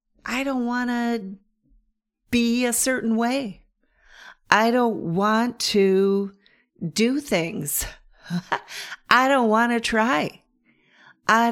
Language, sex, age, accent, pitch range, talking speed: English, female, 40-59, American, 170-235 Hz, 105 wpm